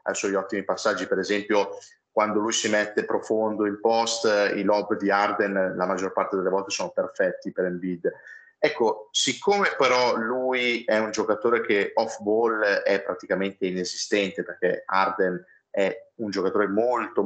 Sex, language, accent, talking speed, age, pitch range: male, Italian, native, 160 wpm, 30-49, 100-130 Hz